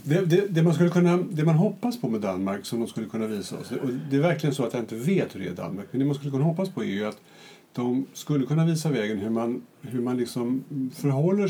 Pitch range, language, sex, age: 115-150 Hz, Swedish, male, 50-69